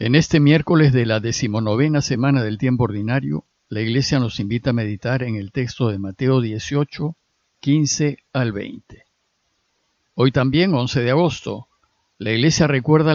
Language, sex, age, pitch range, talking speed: Spanish, male, 50-69, 120-160 Hz, 150 wpm